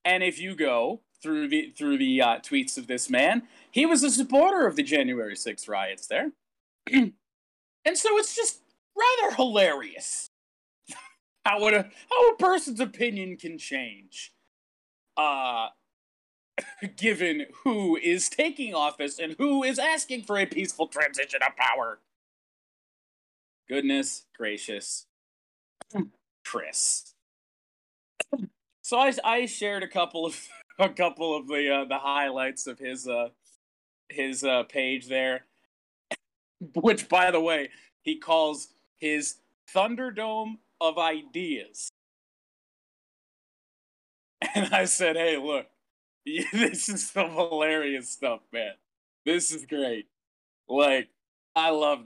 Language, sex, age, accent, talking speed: English, male, 30-49, American, 120 wpm